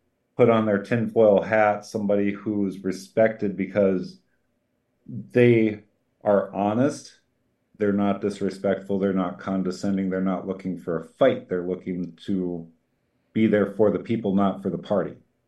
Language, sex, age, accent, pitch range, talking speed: English, male, 50-69, American, 95-105 Hz, 140 wpm